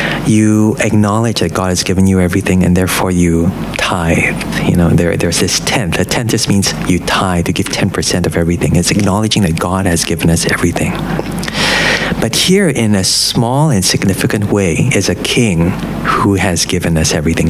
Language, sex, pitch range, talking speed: English, male, 85-110 Hz, 180 wpm